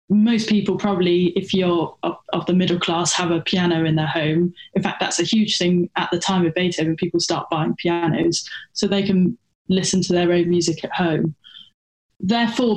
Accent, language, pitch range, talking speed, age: British, English, 175-210 Hz, 195 wpm, 10-29